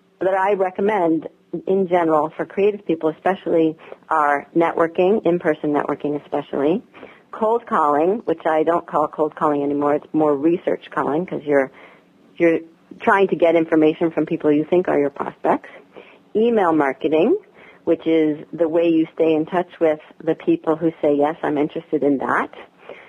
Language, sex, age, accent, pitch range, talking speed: English, female, 40-59, American, 155-185 Hz, 160 wpm